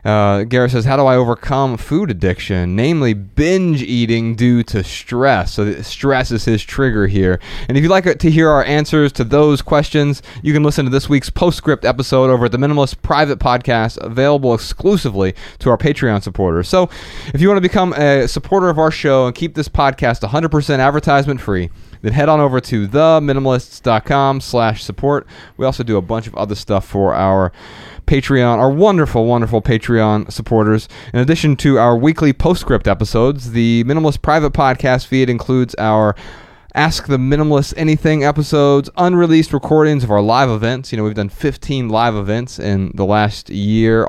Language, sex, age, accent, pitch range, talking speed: English, male, 30-49, American, 105-140 Hz, 180 wpm